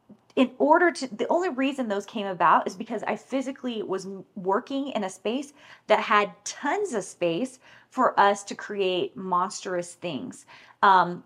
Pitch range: 190-255 Hz